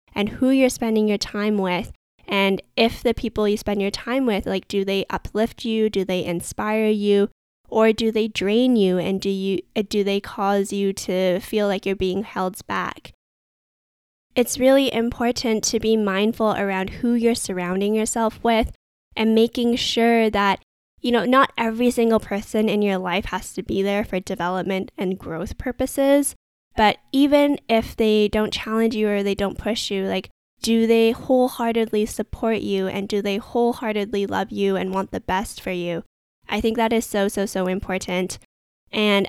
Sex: female